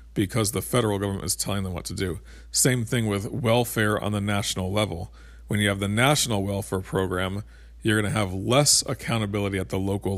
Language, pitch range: English, 95-115 Hz